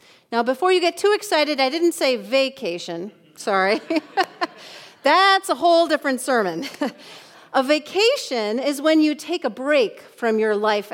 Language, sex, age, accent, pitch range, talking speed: English, female, 40-59, American, 205-305 Hz, 150 wpm